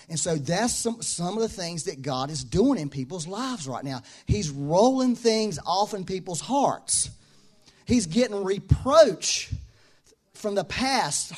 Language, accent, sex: English, American, male